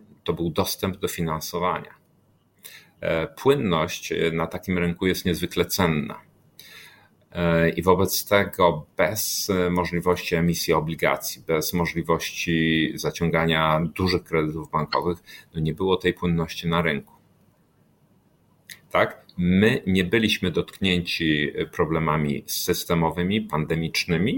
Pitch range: 80-95 Hz